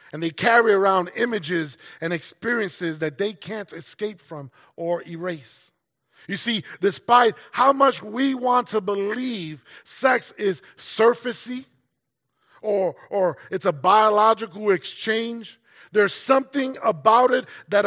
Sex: male